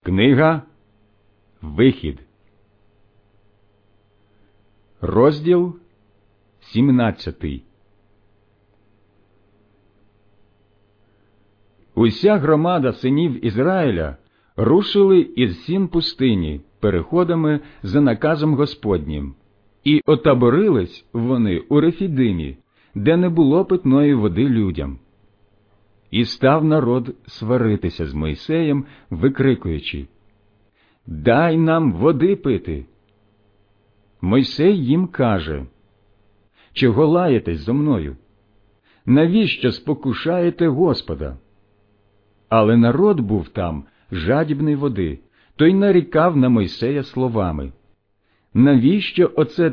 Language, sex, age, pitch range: Ukrainian, male, 50-69, 100-145 Hz